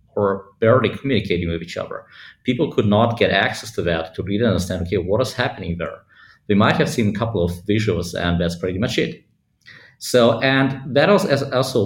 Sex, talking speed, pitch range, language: male, 195 wpm, 95-115 Hz, English